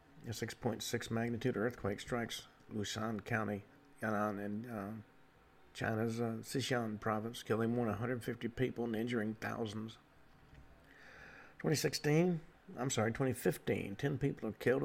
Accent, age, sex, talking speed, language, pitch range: American, 50-69, male, 120 wpm, English, 105-125 Hz